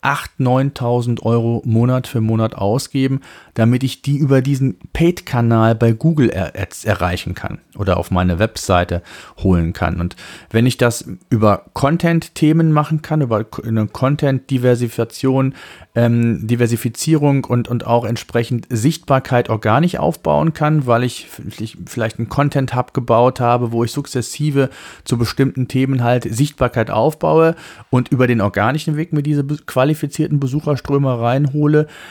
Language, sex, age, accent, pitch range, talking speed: German, male, 40-59, German, 115-145 Hz, 130 wpm